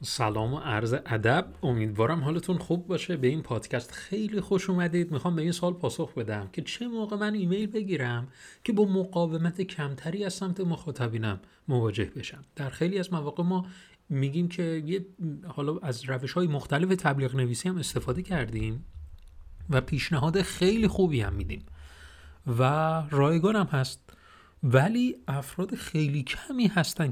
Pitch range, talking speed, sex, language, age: 115-175 Hz, 150 wpm, male, Persian, 40-59